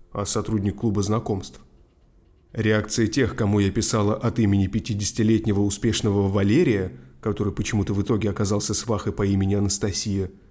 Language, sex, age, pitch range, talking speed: Russian, male, 20-39, 100-120 Hz, 130 wpm